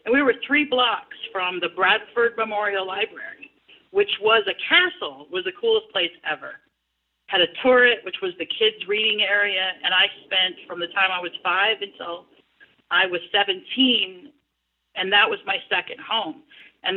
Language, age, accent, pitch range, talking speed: English, 40-59, American, 185-280 Hz, 170 wpm